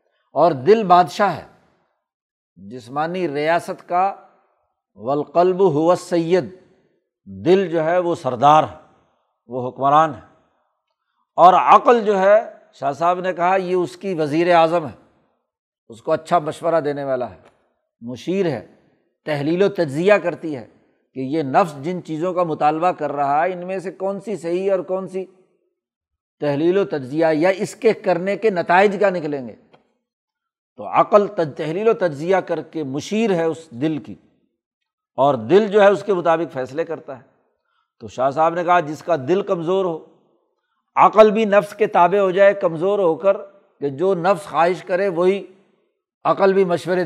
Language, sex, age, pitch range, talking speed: Urdu, male, 60-79, 160-200 Hz, 165 wpm